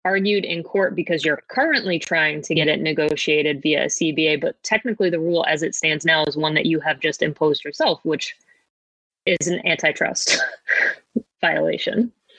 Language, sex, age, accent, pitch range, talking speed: English, female, 20-39, American, 155-185 Hz, 170 wpm